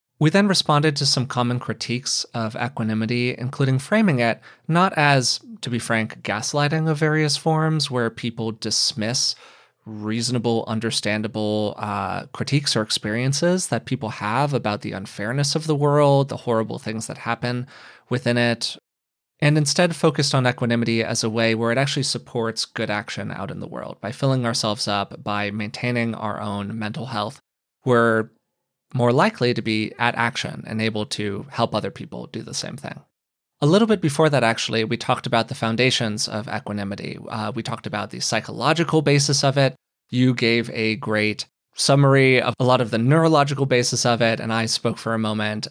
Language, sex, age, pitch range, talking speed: English, male, 20-39, 110-140 Hz, 175 wpm